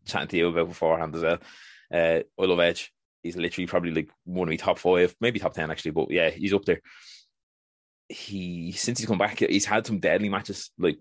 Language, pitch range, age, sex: English, 85-100 Hz, 20-39, male